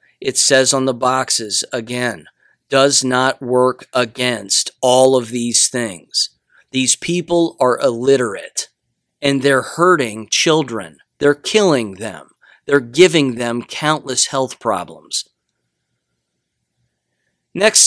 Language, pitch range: English, 120-155 Hz